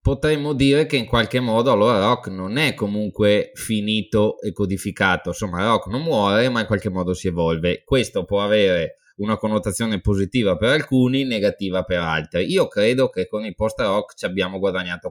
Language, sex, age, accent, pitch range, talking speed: Italian, male, 20-39, native, 95-115 Hz, 180 wpm